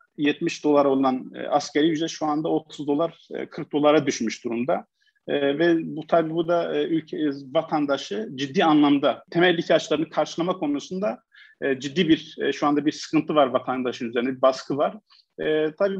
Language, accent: Turkish, native